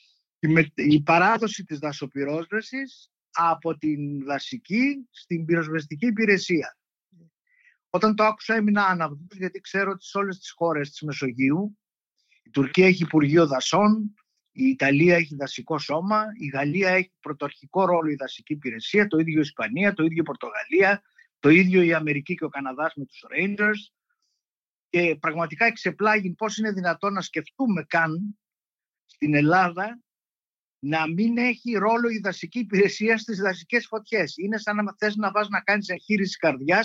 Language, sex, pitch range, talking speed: Greek, male, 155-215 Hz, 150 wpm